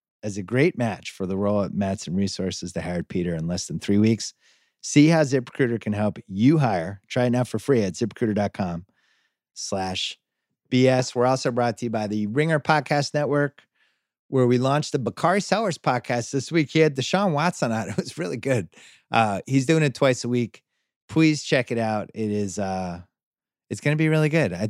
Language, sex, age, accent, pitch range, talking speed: English, male, 30-49, American, 100-145 Hz, 205 wpm